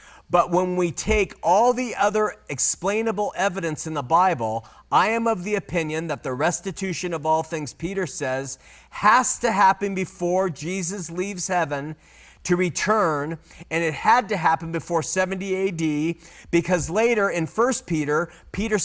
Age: 40-59